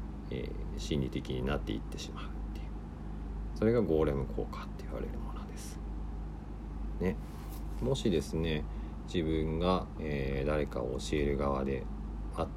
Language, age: Japanese, 50-69